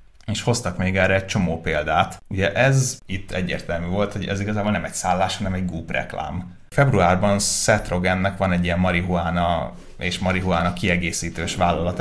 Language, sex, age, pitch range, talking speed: Hungarian, male, 30-49, 90-105 Hz, 165 wpm